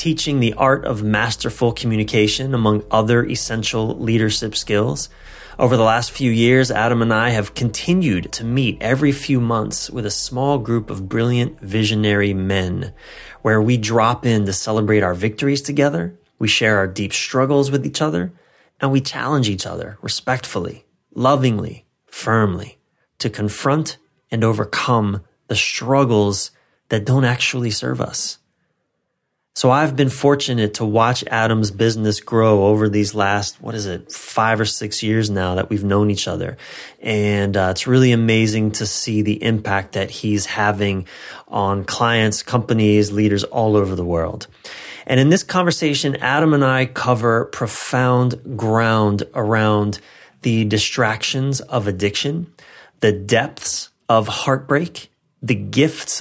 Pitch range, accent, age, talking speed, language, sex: 105-130 Hz, American, 30-49, 145 wpm, English, male